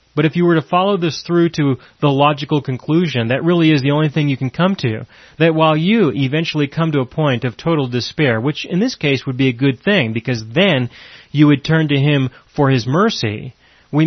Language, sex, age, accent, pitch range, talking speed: English, male, 30-49, American, 130-175 Hz, 225 wpm